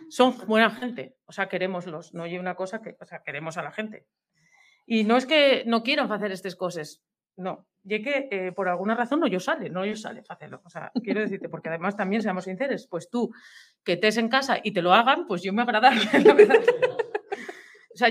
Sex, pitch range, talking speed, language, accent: female, 195-285 Hz, 220 wpm, Spanish, Spanish